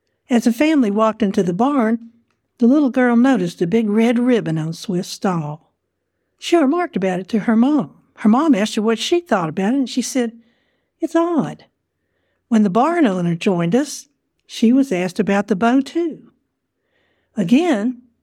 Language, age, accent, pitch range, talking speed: English, 60-79, American, 195-255 Hz, 175 wpm